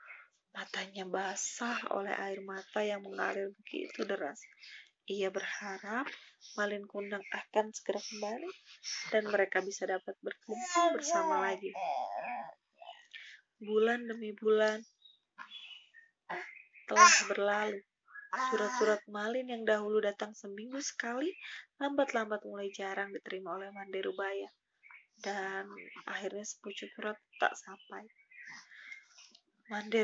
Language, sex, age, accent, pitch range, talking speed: Indonesian, female, 20-39, native, 195-260 Hz, 95 wpm